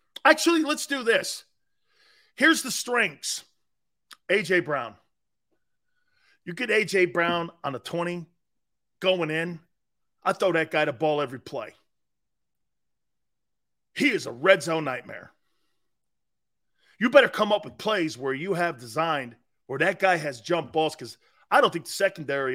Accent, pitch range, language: American, 160-215 Hz, English